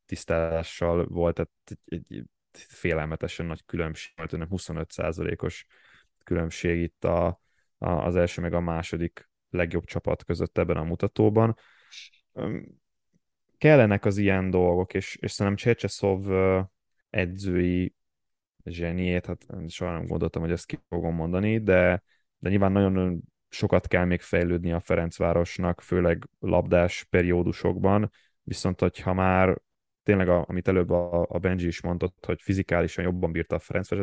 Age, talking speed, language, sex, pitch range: 20-39, 130 wpm, Hungarian, male, 85-95 Hz